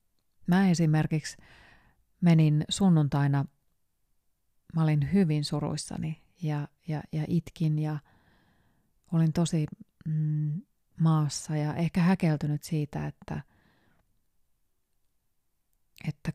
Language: Finnish